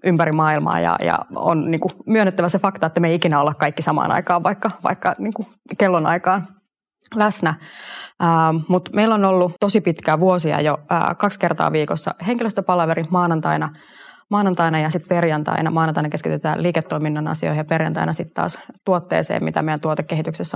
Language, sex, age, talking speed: Finnish, female, 20-39, 145 wpm